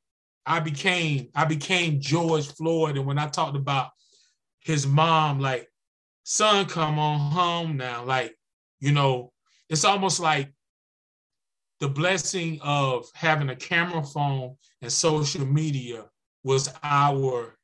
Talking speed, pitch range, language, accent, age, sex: 125 wpm, 130-160 Hz, English, American, 20-39, male